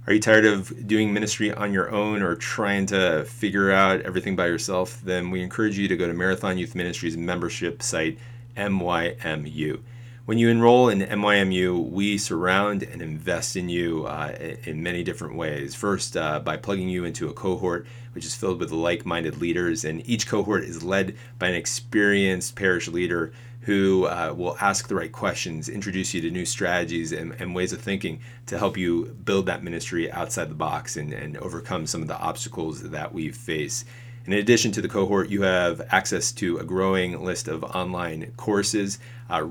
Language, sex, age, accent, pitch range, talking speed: English, male, 30-49, American, 90-115 Hz, 185 wpm